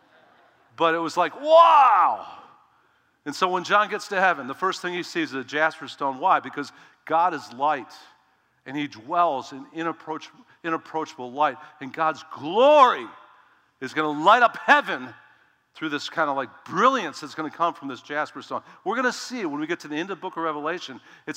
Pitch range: 135-175 Hz